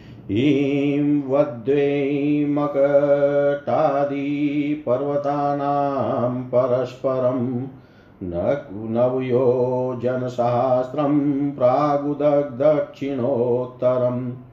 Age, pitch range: 50-69, 125-145 Hz